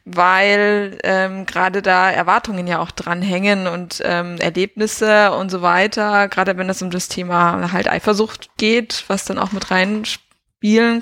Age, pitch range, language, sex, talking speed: 20-39, 180-210 Hz, German, female, 155 wpm